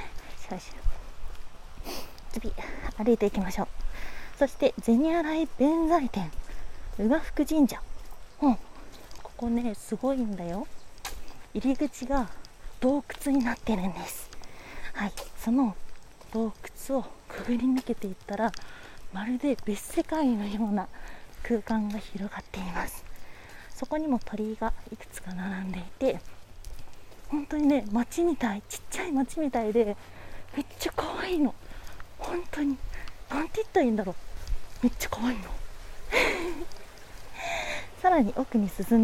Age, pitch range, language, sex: 30-49, 210-285 Hz, Japanese, female